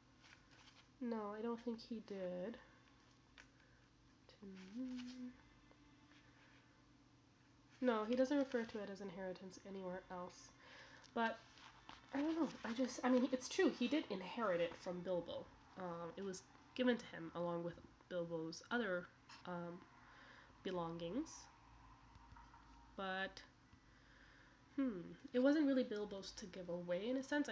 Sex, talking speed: female, 125 wpm